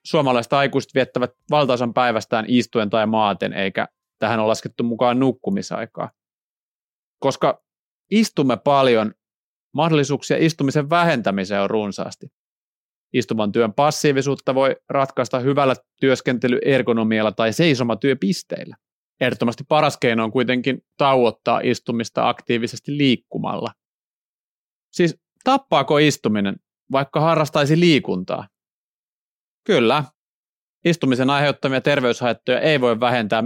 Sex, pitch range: male, 120-150 Hz